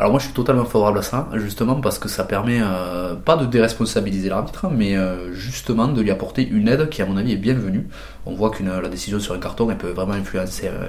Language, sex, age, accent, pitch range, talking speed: French, male, 20-39, French, 95-115 Hz, 240 wpm